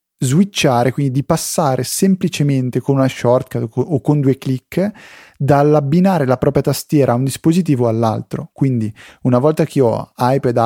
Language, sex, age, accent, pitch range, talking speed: Italian, male, 30-49, native, 125-155 Hz, 145 wpm